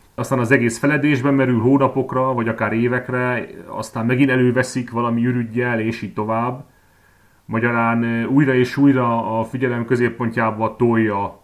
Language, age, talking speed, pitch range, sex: Hungarian, 30-49, 130 wpm, 105-120 Hz, male